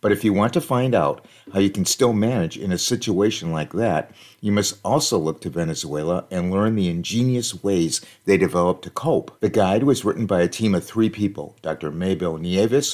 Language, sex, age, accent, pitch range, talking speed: English, male, 50-69, American, 90-110 Hz, 210 wpm